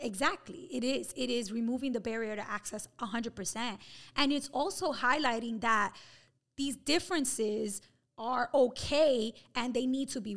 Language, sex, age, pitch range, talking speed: English, female, 20-39, 200-255 Hz, 150 wpm